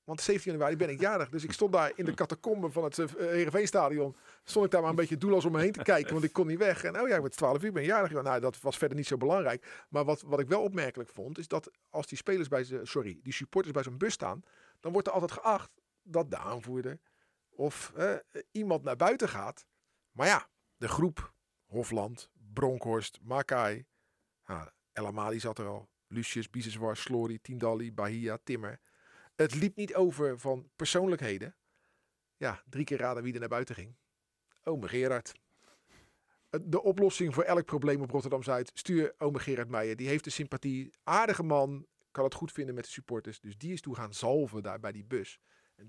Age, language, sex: 40-59, Dutch, male